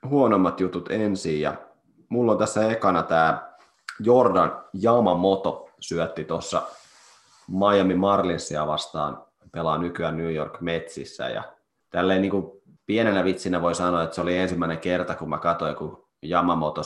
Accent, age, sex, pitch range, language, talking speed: native, 30-49, male, 85-100 Hz, Finnish, 130 wpm